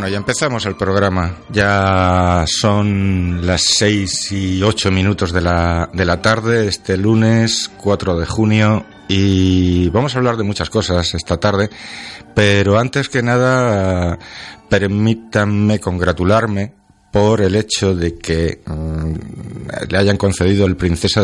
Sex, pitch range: male, 90-110 Hz